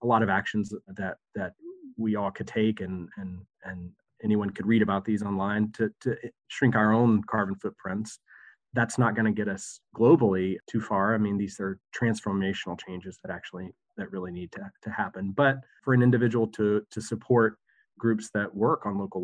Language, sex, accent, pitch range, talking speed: English, male, American, 95-115 Hz, 185 wpm